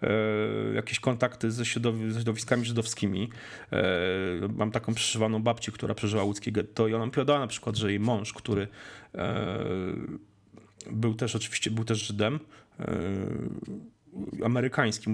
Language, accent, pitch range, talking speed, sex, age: Polish, native, 110-135 Hz, 120 wpm, male, 40-59